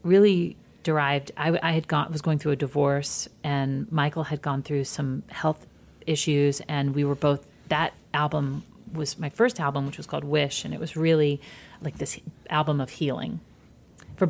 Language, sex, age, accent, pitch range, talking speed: English, female, 40-59, American, 140-170 Hz, 180 wpm